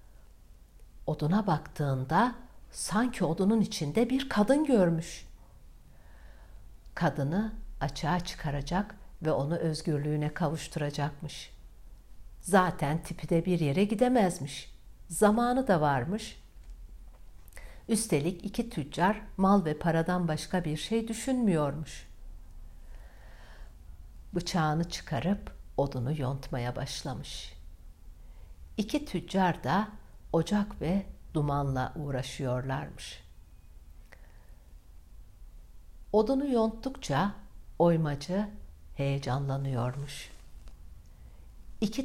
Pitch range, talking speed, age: 120-190 Hz, 70 wpm, 60-79